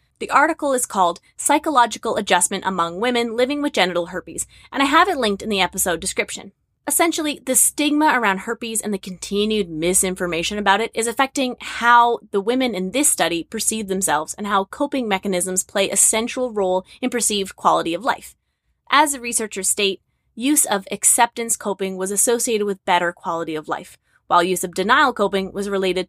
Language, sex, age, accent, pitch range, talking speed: English, female, 20-39, American, 185-250 Hz, 175 wpm